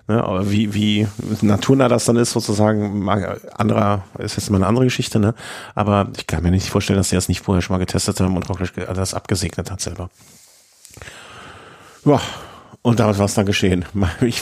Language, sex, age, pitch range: German, male, 50-69, 100-120 Hz